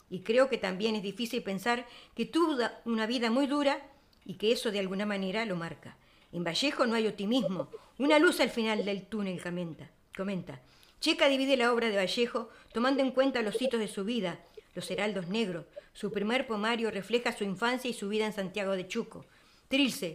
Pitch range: 200-250 Hz